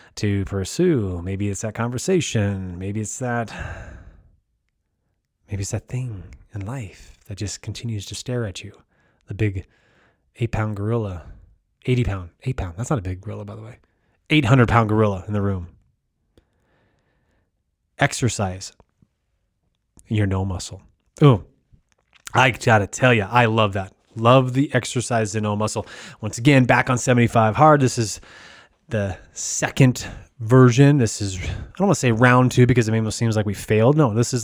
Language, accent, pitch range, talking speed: English, American, 105-130 Hz, 165 wpm